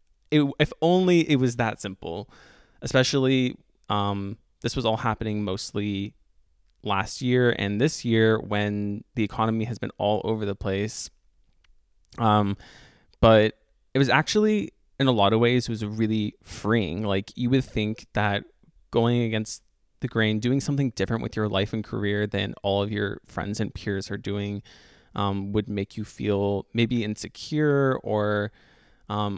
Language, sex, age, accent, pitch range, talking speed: English, male, 20-39, American, 100-120 Hz, 155 wpm